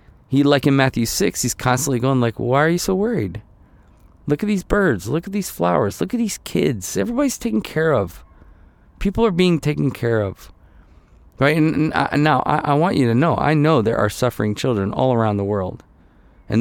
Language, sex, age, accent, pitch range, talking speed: English, male, 40-59, American, 105-150 Hz, 210 wpm